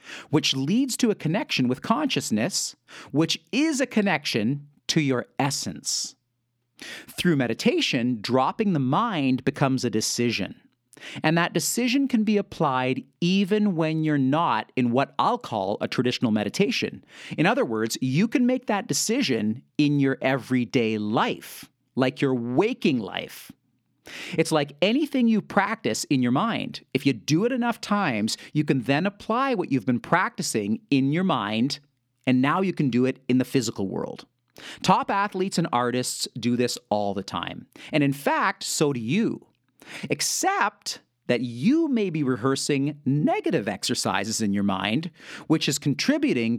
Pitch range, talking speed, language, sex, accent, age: 120-175 Hz, 155 wpm, English, male, American, 40-59